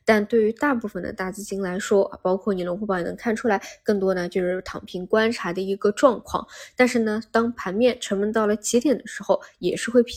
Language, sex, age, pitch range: Chinese, female, 10-29, 190-230 Hz